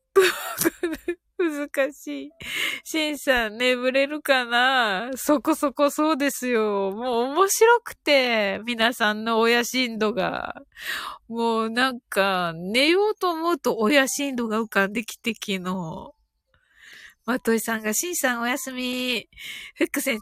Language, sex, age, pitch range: Japanese, female, 20-39, 230-345 Hz